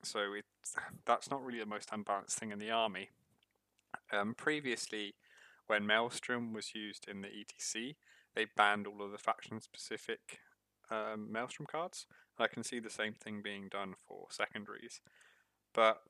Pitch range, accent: 105-125 Hz, British